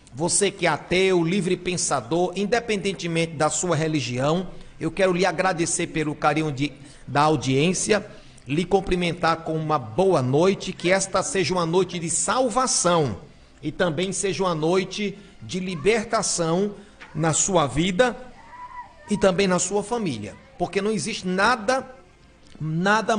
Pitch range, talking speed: 155-200 Hz, 130 wpm